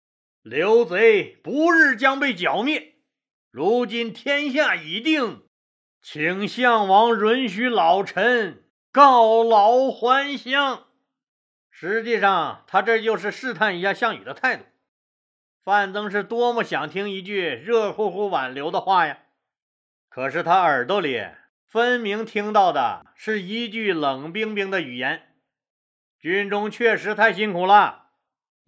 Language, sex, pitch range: Chinese, male, 200-245 Hz